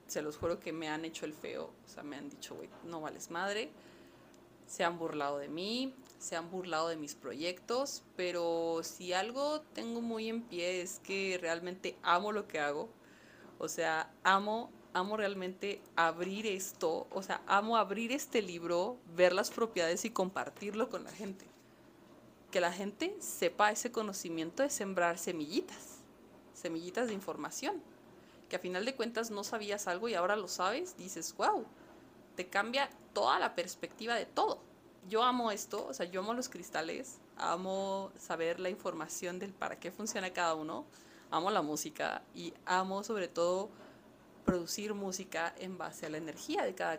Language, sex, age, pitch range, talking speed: Spanish, female, 30-49, 175-230 Hz, 170 wpm